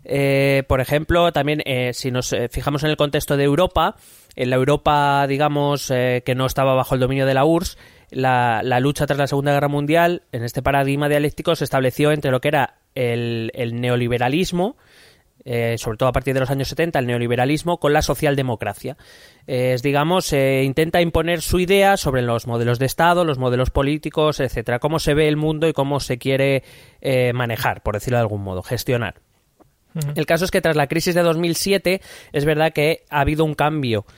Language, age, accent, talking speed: Spanish, 20-39, Spanish, 200 wpm